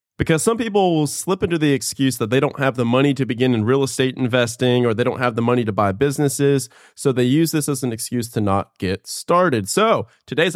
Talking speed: 240 wpm